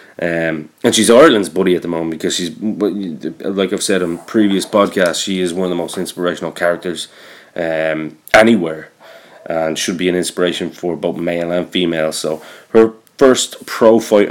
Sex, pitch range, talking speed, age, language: male, 85-105 Hz, 170 wpm, 20-39, English